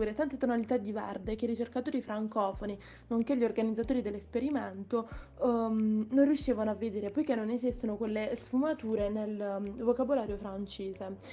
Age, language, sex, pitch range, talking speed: 20-39, Italian, female, 215-250 Hz, 140 wpm